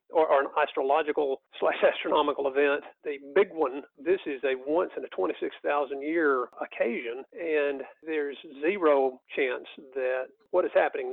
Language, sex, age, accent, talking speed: English, male, 40-59, American, 140 wpm